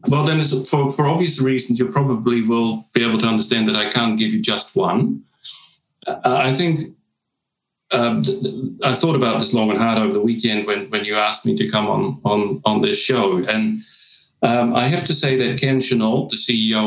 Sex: male